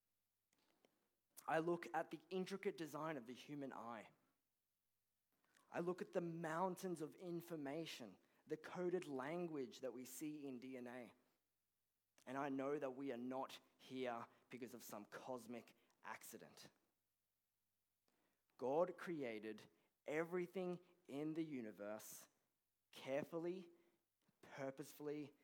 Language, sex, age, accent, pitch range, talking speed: English, male, 20-39, Australian, 110-165 Hz, 110 wpm